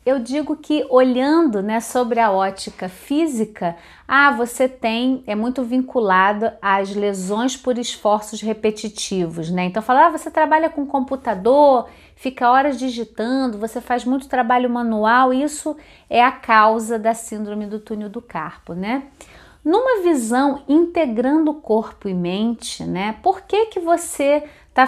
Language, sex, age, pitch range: Portuguese, female, 30-49, 205-265 Hz